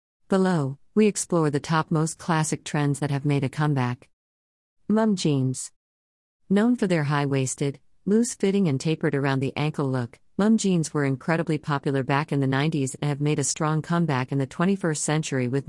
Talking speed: 175 wpm